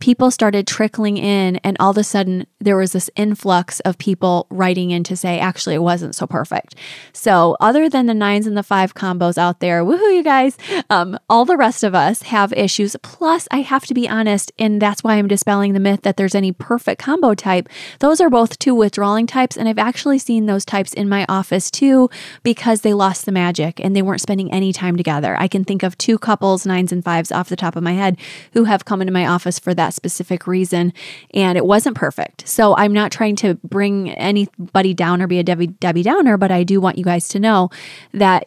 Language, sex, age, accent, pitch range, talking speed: English, female, 20-39, American, 185-220 Hz, 225 wpm